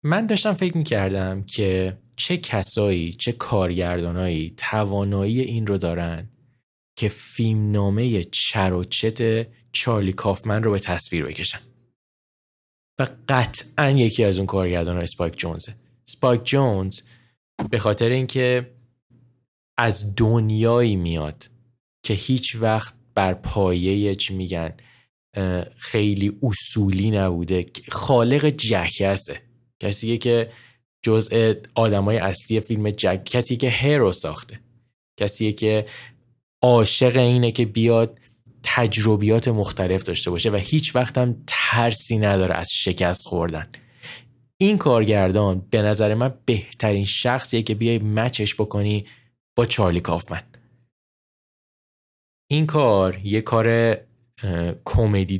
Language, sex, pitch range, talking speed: Persian, male, 95-120 Hz, 110 wpm